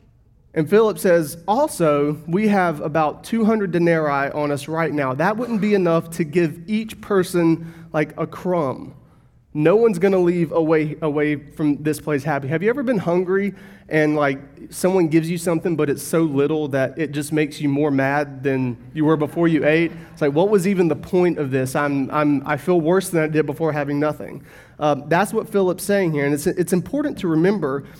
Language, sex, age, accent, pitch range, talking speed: English, male, 30-49, American, 145-180 Hz, 205 wpm